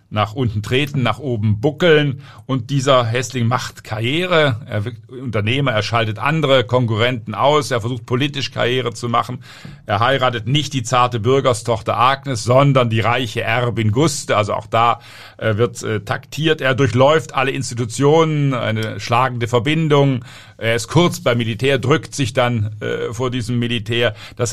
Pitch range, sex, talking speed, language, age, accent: 115-140 Hz, male, 155 wpm, German, 50-69, German